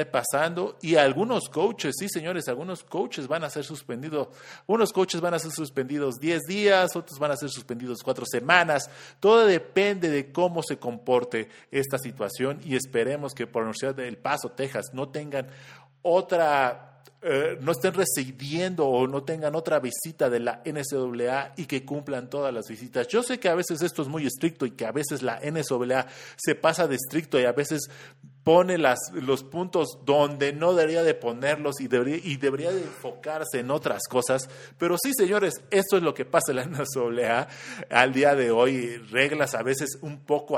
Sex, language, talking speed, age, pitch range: male, Spanish, 185 wpm, 40-59, 130-170 Hz